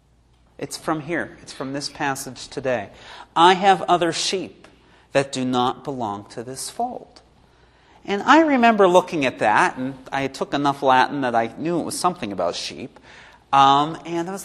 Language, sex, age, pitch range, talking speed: English, male, 40-59, 125-185 Hz, 175 wpm